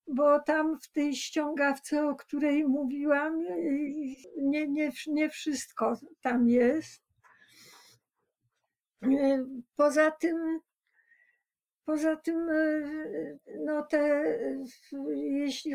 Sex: female